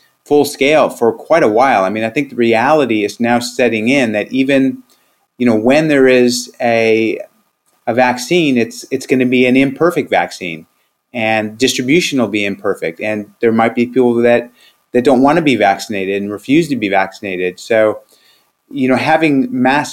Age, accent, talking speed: 30-49, American, 185 wpm